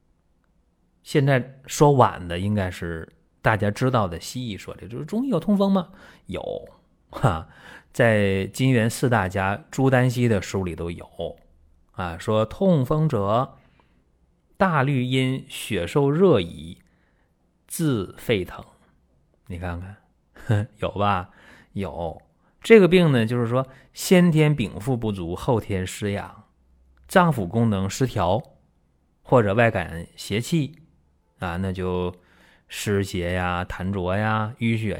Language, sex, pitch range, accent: Chinese, male, 90-135 Hz, native